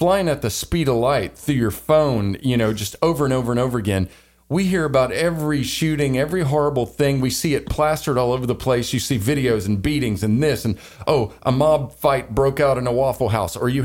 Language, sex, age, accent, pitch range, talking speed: English, male, 40-59, American, 115-150 Hz, 235 wpm